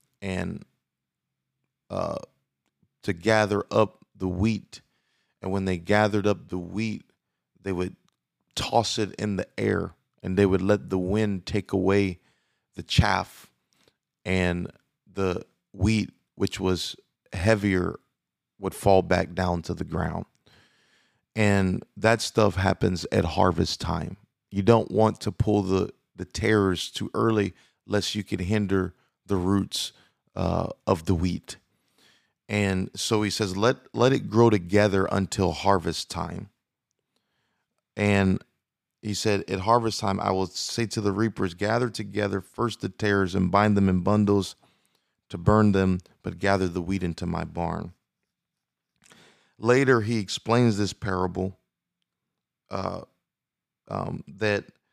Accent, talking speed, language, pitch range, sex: American, 135 wpm, English, 95-105 Hz, male